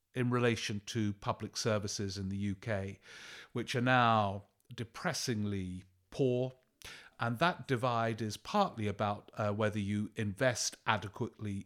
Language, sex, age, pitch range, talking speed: English, male, 50-69, 100-120 Hz, 125 wpm